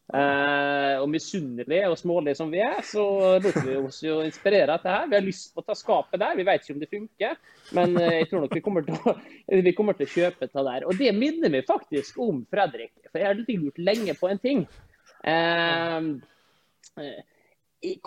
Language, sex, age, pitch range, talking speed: English, male, 30-49, 155-205 Hz, 205 wpm